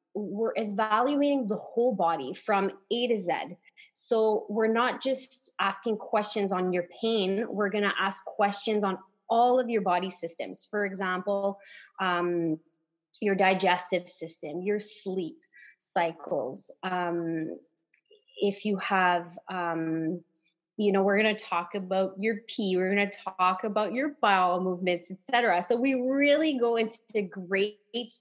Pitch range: 185-235 Hz